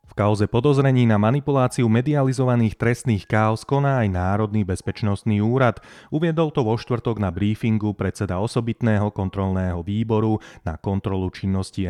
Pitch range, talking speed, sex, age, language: 100-120 Hz, 125 wpm, male, 30-49, Slovak